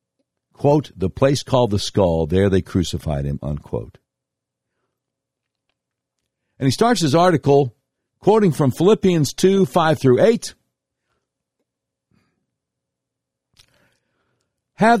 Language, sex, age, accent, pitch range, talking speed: English, male, 60-79, American, 105-150 Hz, 95 wpm